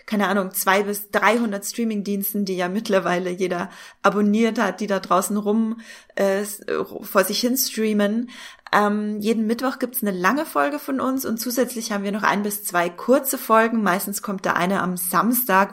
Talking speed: 180 wpm